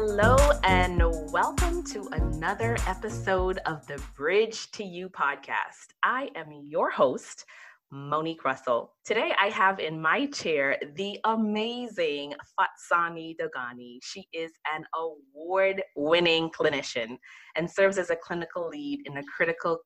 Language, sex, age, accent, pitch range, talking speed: English, female, 30-49, American, 150-195 Hz, 125 wpm